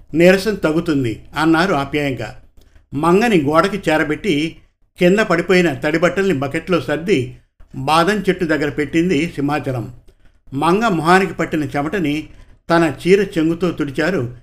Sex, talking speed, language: male, 105 wpm, Telugu